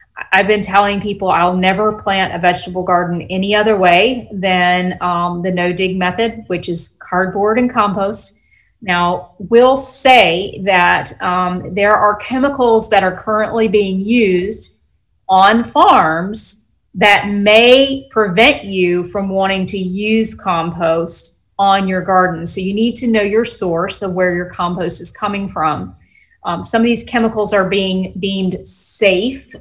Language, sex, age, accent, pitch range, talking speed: English, female, 40-59, American, 180-215 Hz, 150 wpm